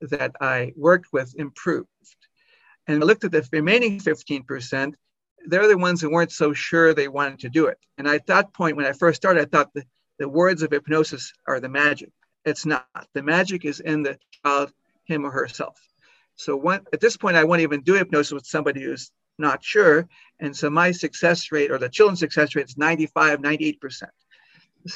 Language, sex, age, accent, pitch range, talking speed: English, male, 60-79, American, 145-175 Hz, 190 wpm